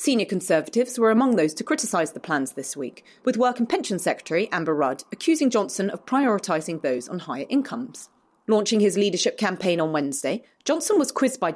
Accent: British